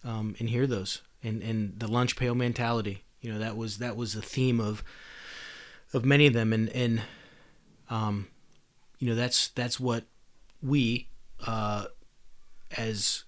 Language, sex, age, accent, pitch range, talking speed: English, male, 30-49, American, 110-125 Hz, 160 wpm